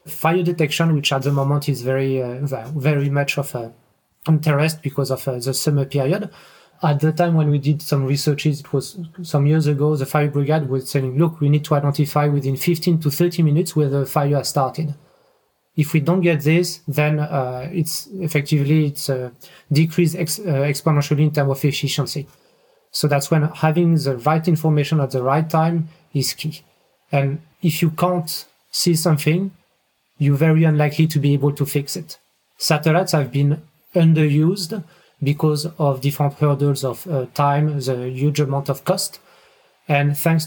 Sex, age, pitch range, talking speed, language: male, 30-49, 140-160 Hz, 175 wpm, English